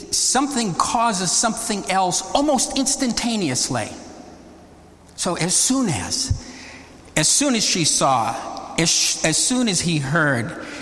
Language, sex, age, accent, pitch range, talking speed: English, male, 50-69, American, 145-175 Hz, 115 wpm